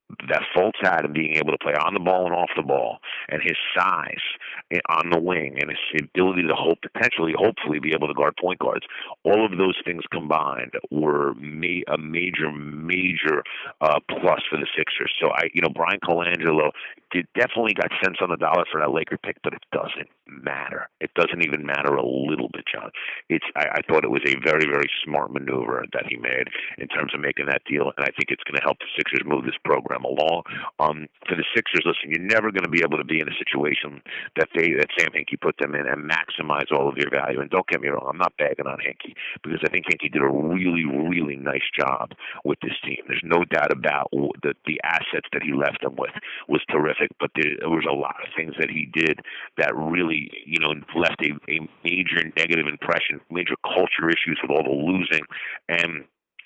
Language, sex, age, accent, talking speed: English, male, 50-69, American, 220 wpm